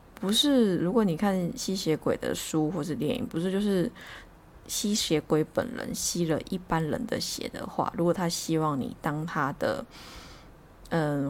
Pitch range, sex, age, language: 155-210 Hz, female, 20-39, Chinese